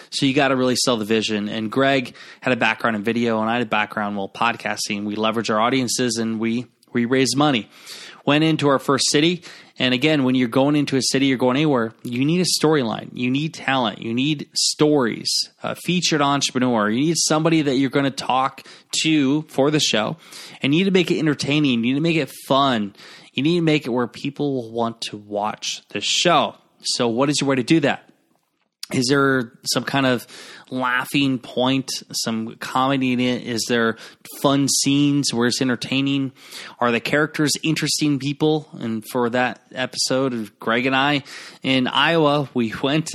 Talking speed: 195 wpm